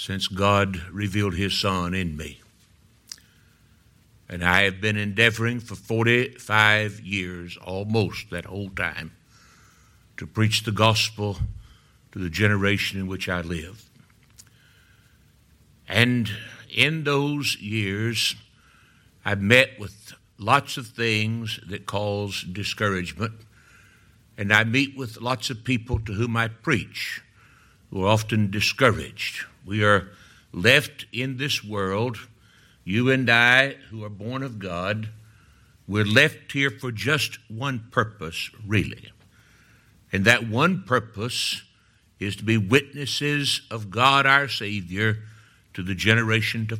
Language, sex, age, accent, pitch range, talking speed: English, male, 60-79, American, 100-125 Hz, 120 wpm